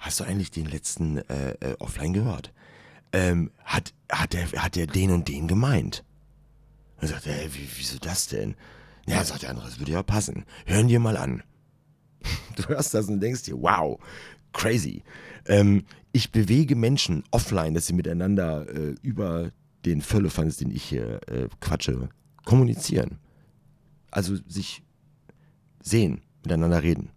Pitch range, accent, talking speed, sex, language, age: 75-115 Hz, German, 145 wpm, male, German, 40-59